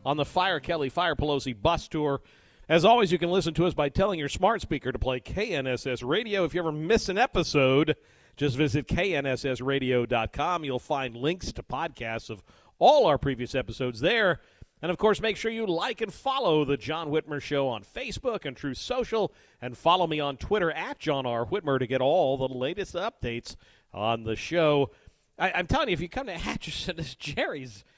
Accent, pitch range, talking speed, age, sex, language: American, 120-160 Hz, 195 wpm, 50-69, male, English